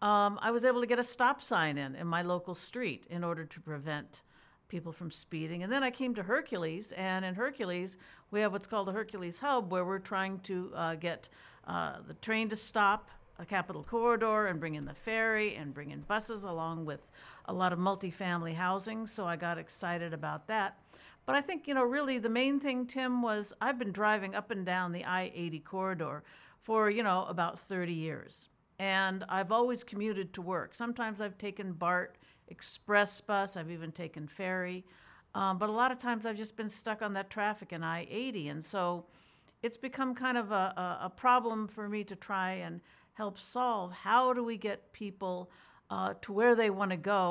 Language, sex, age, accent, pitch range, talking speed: English, female, 50-69, American, 175-220 Hz, 200 wpm